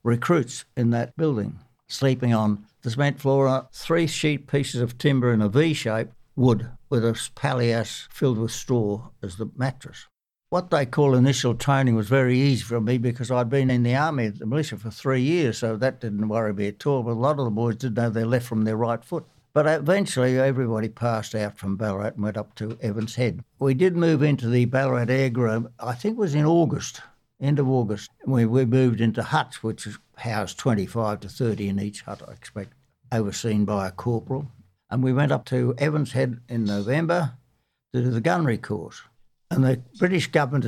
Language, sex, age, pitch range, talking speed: English, male, 60-79, 115-140 Hz, 200 wpm